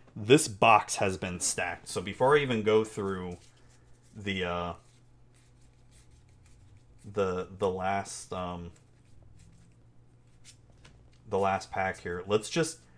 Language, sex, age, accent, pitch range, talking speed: English, male, 30-49, American, 100-120 Hz, 105 wpm